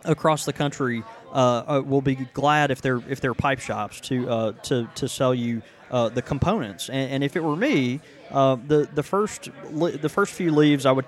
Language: English